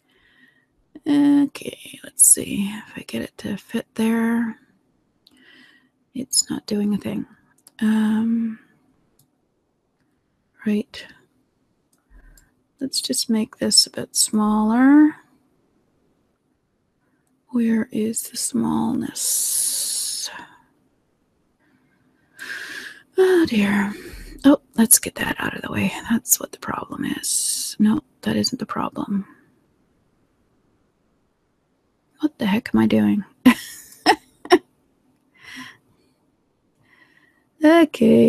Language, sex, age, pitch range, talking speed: English, female, 30-49, 220-285 Hz, 85 wpm